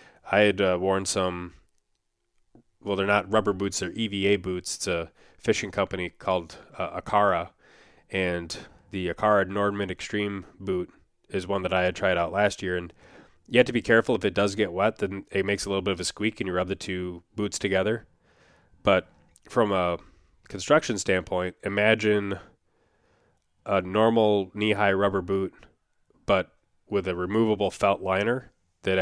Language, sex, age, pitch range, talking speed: English, male, 20-39, 90-105 Hz, 165 wpm